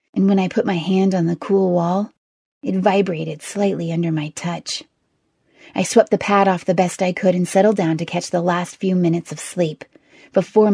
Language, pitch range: English, 160-190 Hz